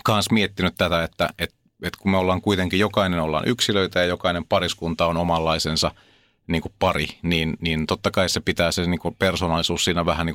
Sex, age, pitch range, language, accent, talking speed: male, 30-49, 85-100 Hz, Finnish, native, 195 wpm